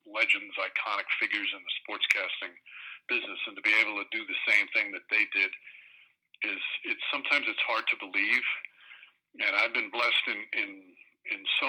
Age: 50-69